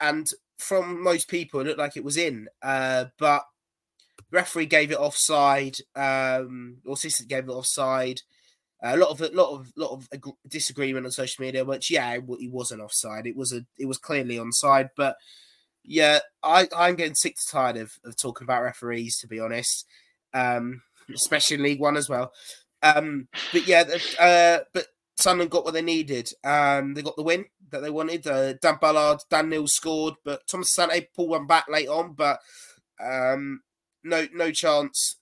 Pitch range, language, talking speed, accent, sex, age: 130-160 Hz, English, 190 wpm, British, male, 20-39